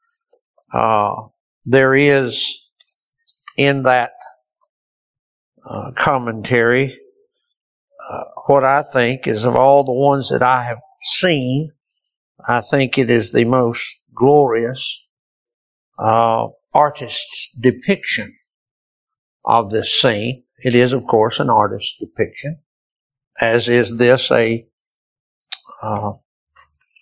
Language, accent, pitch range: English, American, 120-155 Hz